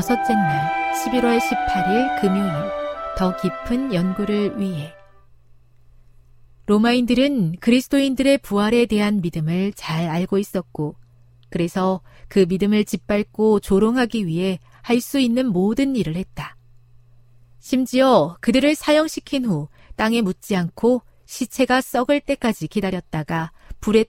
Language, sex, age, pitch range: Korean, female, 40-59, 155-245 Hz